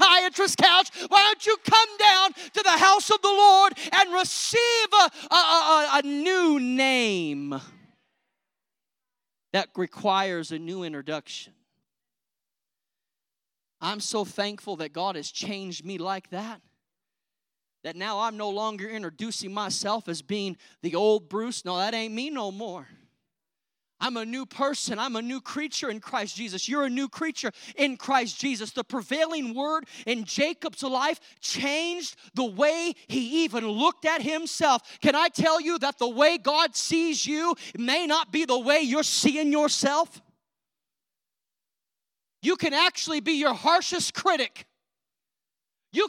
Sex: male